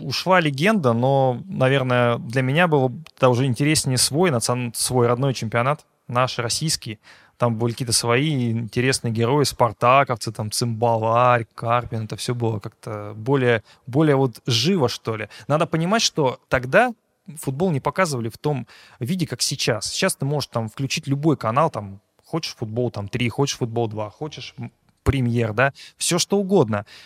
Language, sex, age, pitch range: Russian, male, 20-39, 120-150 Hz